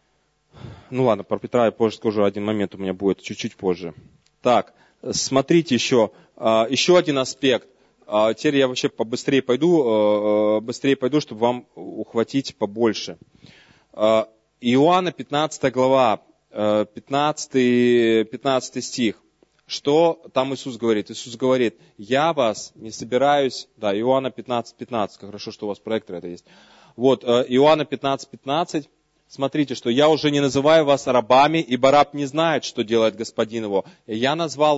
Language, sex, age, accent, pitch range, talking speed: Russian, male, 20-39, native, 110-140 Hz, 140 wpm